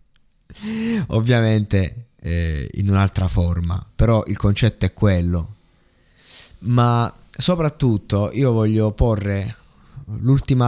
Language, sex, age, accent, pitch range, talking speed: Italian, male, 20-39, native, 100-120 Hz, 90 wpm